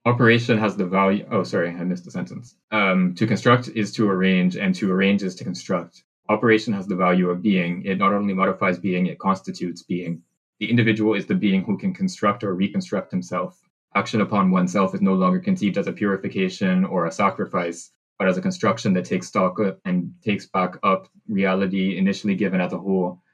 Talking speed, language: 200 wpm, English